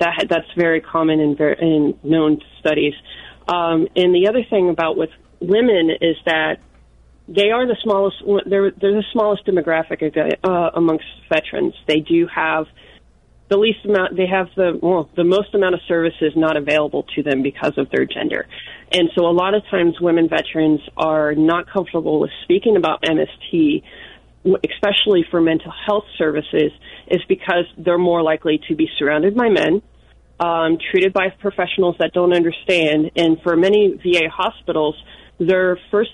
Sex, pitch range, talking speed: female, 160-185 Hz, 160 wpm